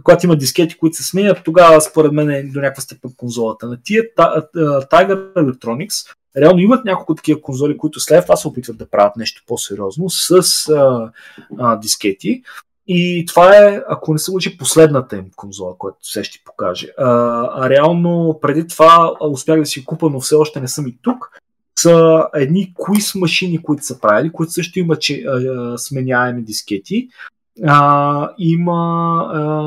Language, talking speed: Bulgarian, 160 wpm